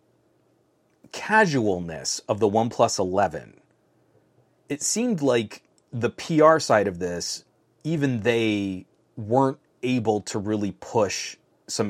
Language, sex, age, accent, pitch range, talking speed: English, male, 30-49, American, 95-125 Hz, 105 wpm